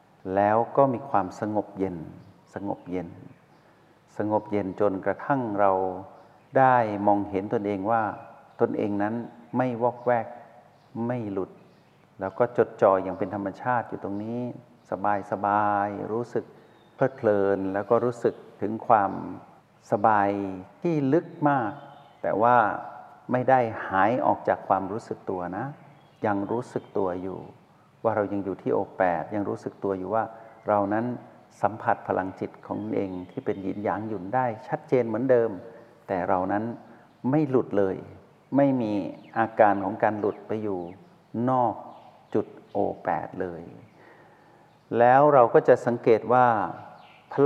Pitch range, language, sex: 100-125 Hz, Thai, male